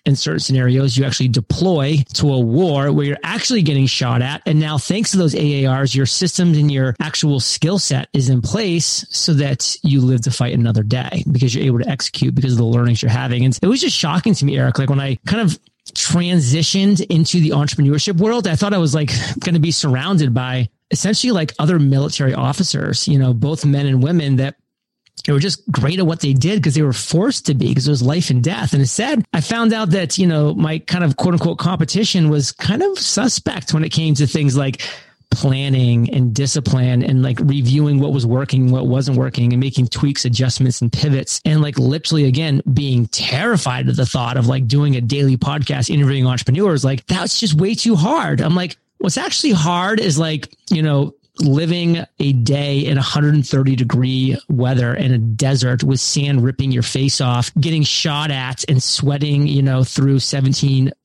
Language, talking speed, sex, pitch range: English, 205 wpm, male, 130-160 Hz